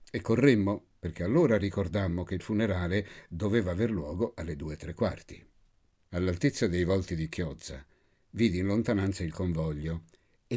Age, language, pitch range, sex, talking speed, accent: 60-79, Italian, 85-110 Hz, male, 150 wpm, native